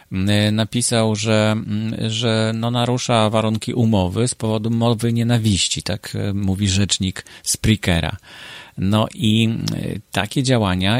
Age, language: 40-59, Polish